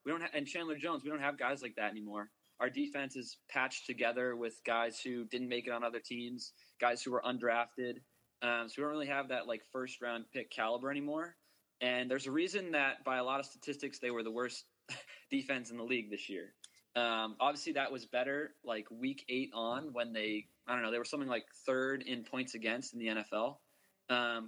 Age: 20-39